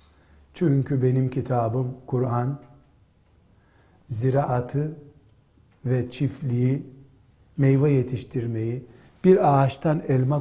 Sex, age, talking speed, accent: male, 60-79, 70 wpm, native